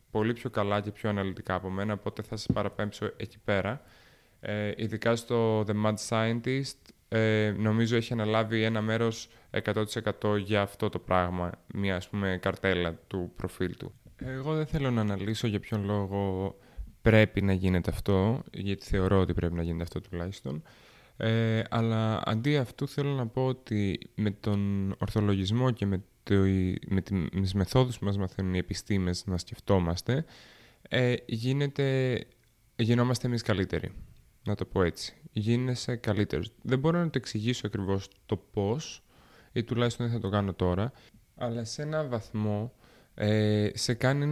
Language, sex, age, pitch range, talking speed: Greek, male, 20-39, 100-120 Hz, 150 wpm